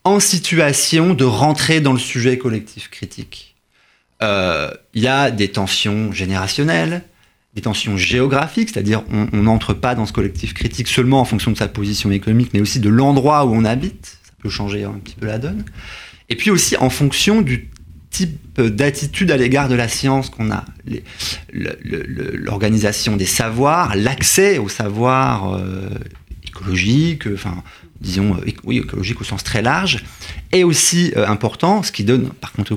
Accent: French